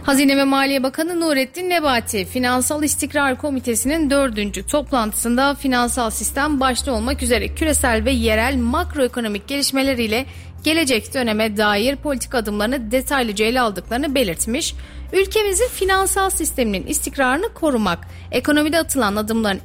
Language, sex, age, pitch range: Turkish, female, 30-49, 225-290 Hz